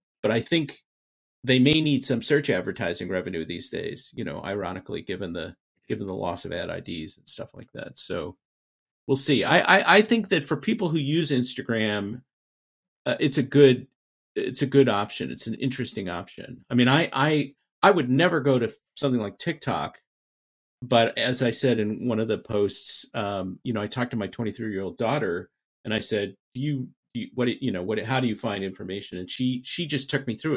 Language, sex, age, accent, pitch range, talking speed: English, male, 50-69, American, 105-140 Hz, 205 wpm